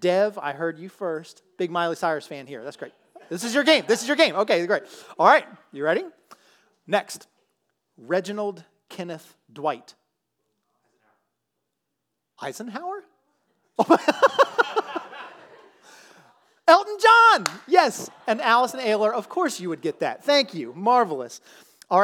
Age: 30-49